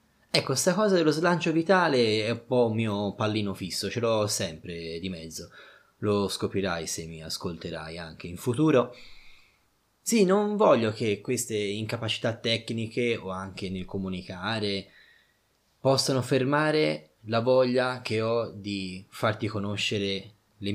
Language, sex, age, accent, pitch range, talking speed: Italian, male, 20-39, native, 100-130 Hz, 135 wpm